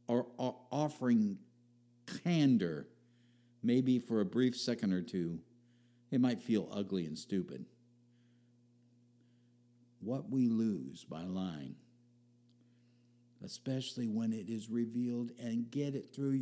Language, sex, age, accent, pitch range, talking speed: English, male, 60-79, American, 115-120 Hz, 105 wpm